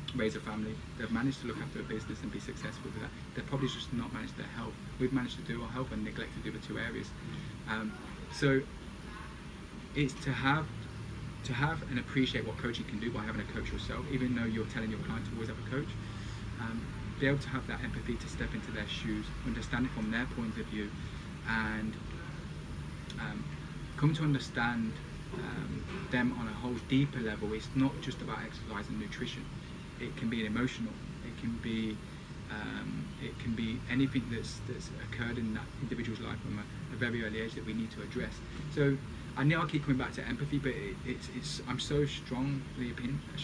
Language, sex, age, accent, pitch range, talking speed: English, male, 20-39, British, 110-135 Hz, 205 wpm